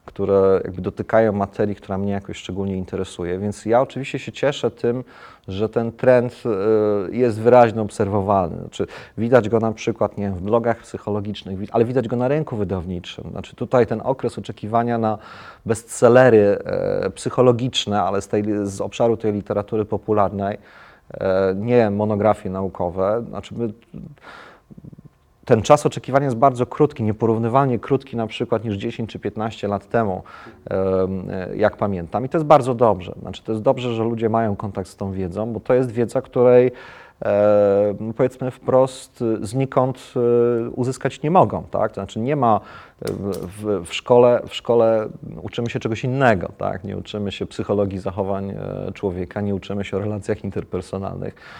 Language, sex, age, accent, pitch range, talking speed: Polish, male, 30-49, native, 100-125 Hz, 150 wpm